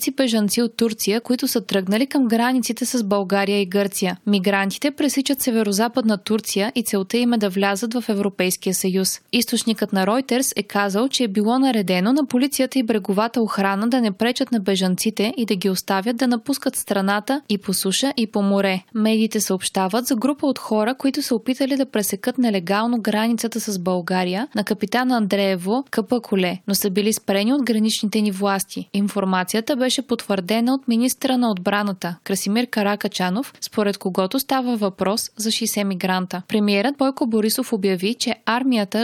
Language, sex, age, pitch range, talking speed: Bulgarian, female, 20-39, 200-245 Hz, 165 wpm